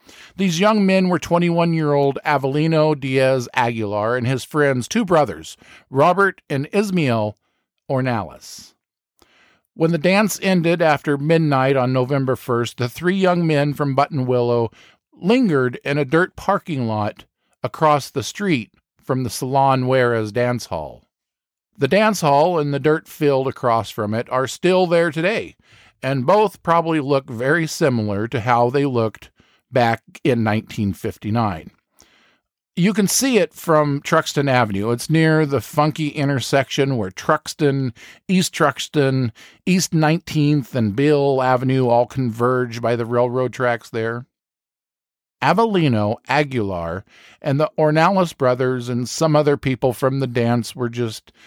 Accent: American